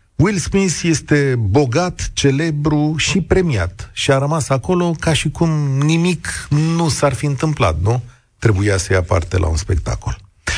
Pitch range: 95-150 Hz